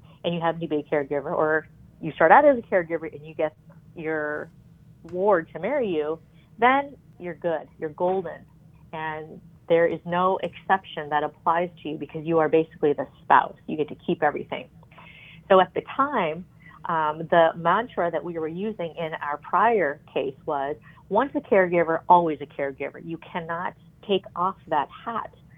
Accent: American